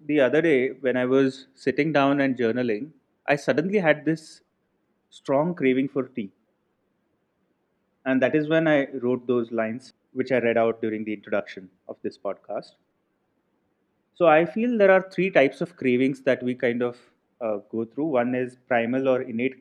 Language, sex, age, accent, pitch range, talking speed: English, male, 30-49, Indian, 120-150 Hz, 175 wpm